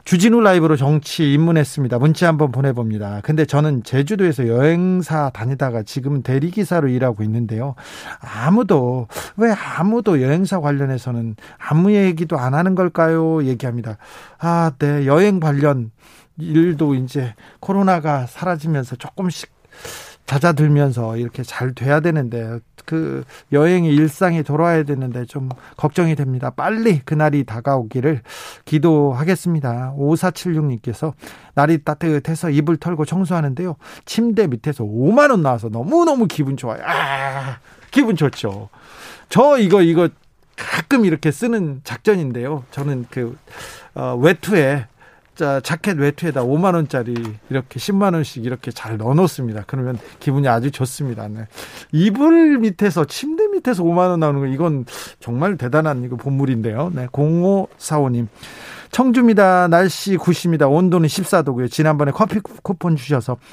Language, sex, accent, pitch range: Korean, male, native, 130-175 Hz